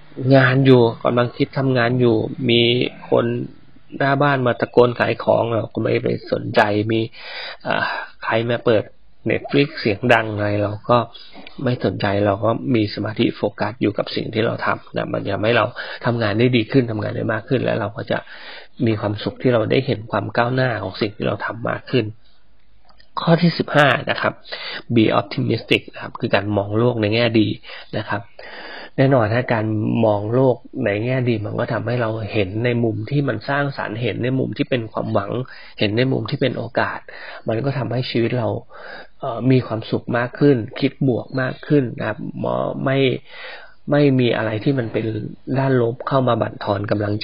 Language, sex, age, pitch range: Thai, male, 20-39, 105-130 Hz